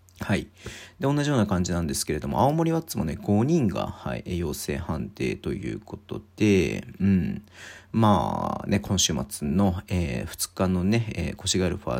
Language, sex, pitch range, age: Japanese, male, 95-120 Hz, 40-59